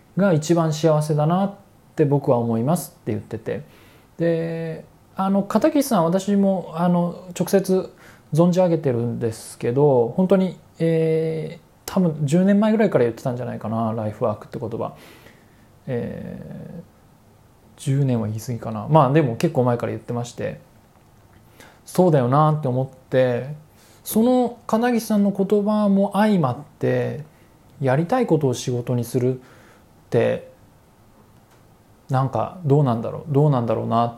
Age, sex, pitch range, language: 20-39, male, 120-180 Hz, Japanese